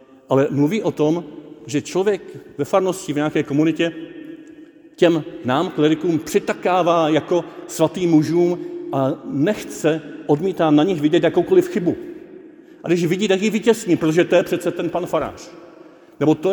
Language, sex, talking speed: Czech, male, 150 wpm